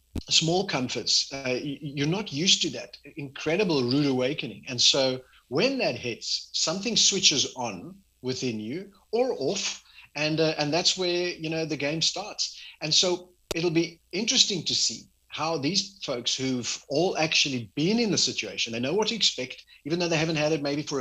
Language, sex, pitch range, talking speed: English, male, 125-165 Hz, 180 wpm